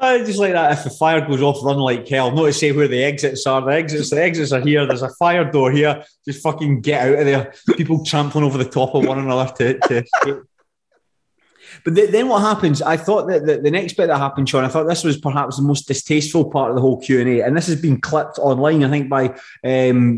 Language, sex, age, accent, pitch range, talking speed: English, male, 20-39, British, 130-155 Hz, 245 wpm